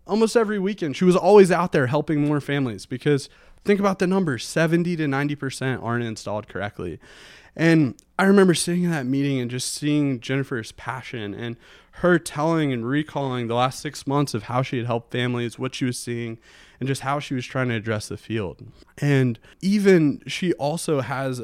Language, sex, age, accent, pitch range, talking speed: English, male, 20-39, American, 115-145 Hz, 190 wpm